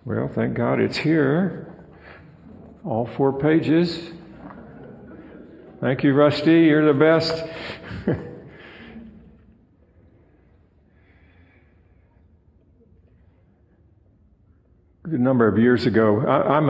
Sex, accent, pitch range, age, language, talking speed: male, American, 100-130 Hz, 50-69, English, 75 wpm